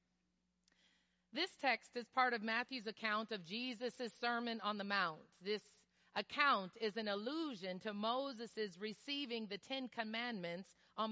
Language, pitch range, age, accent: English, 200-250 Hz, 40-59, American